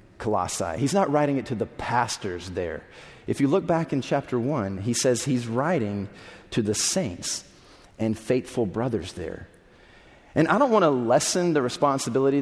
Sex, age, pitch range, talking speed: male, 30-49, 110-140 Hz, 165 wpm